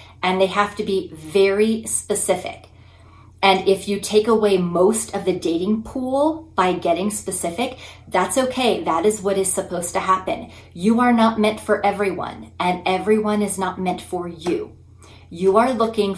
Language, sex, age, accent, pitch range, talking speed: English, female, 30-49, American, 170-215 Hz, 165 wpm